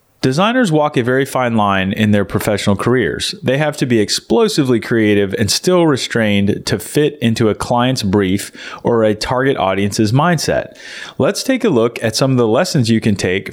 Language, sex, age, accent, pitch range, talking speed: English, male, 30-49, American, 105-145 Hz, 185 wpm